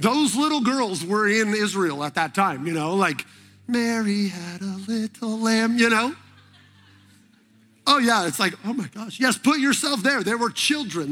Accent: American